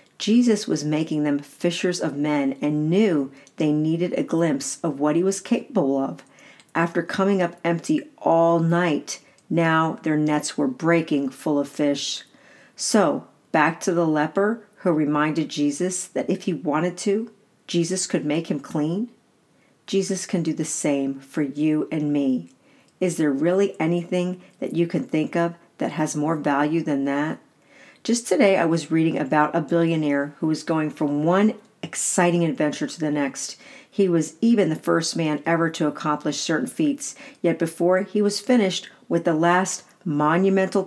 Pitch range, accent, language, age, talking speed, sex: 150-185 Hz, American, English, 50-69, 165 wpm, female